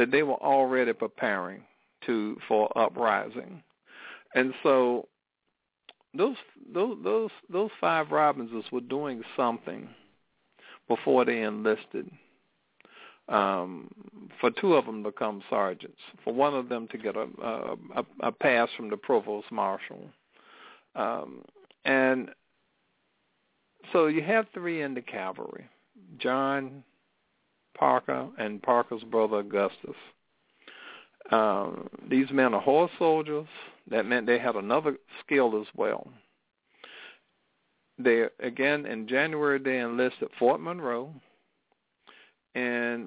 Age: 60-79